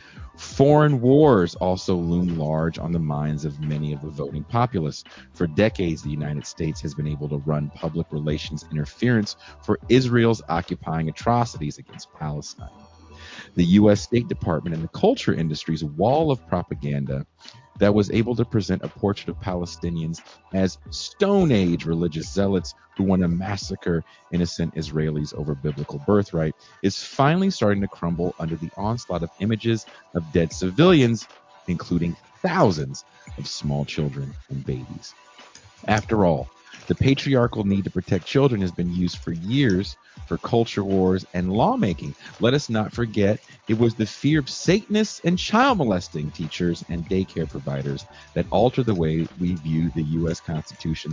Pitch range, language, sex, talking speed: 75-105 Hz, English, male, 155 wpm